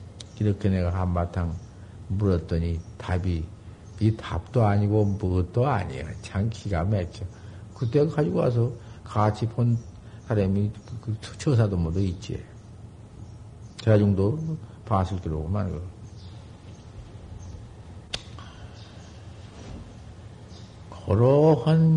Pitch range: 100-135 Hz